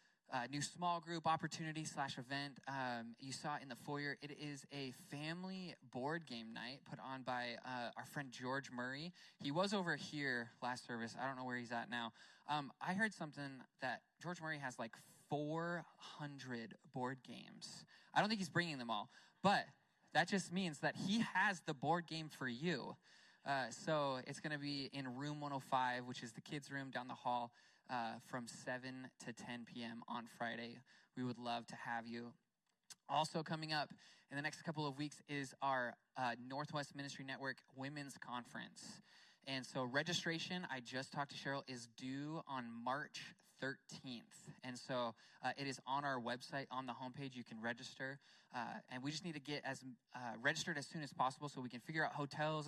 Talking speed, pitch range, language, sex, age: 190 wpm, 125-155 Hz, English, male, 20-39